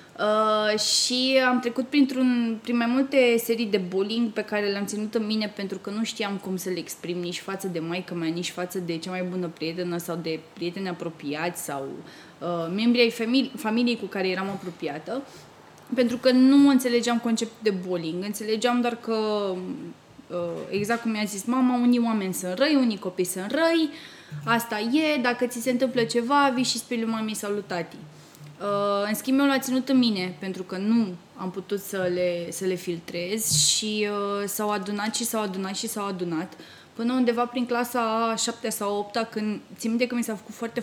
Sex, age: female, 20-39